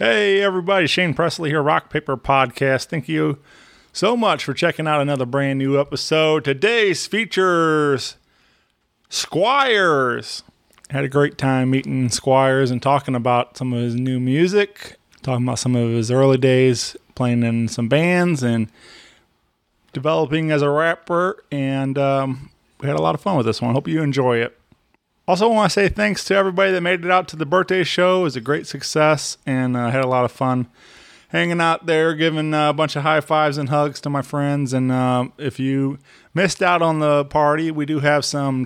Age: 20-39